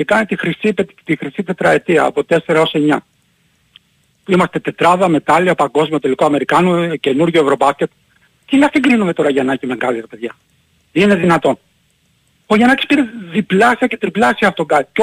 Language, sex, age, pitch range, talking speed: Greek, male, 40-59, 165-235 Hz, 160 wpm